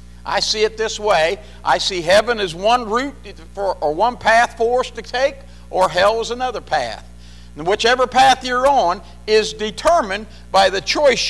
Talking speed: 180 wpm